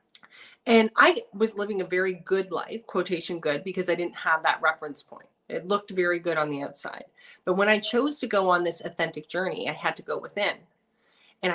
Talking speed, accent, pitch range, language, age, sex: 210 wpm, American, 165-220 Hz, English, 30-49, female